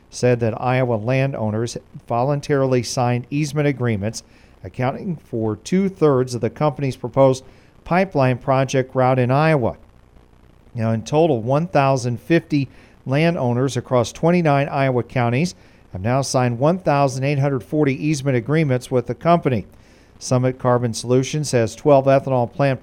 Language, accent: English, American